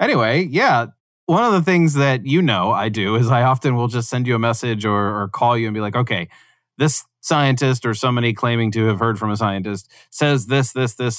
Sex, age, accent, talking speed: male, 30-49, American, 230 wpm